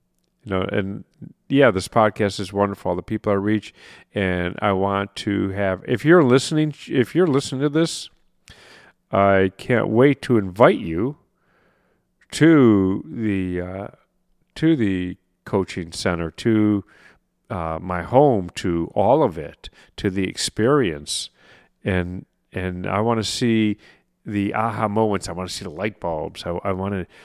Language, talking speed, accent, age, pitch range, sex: English, 150 wpm, American, 40-59, 90-115 Hz, male